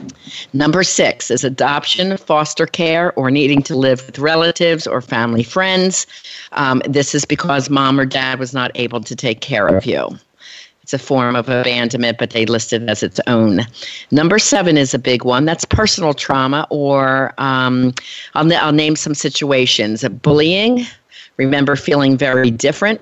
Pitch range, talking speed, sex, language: 125-160 Hz, 170 wpm, female, English